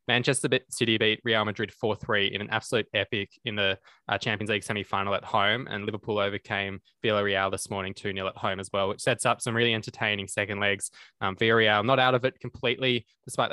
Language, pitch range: English, 100-125 Hz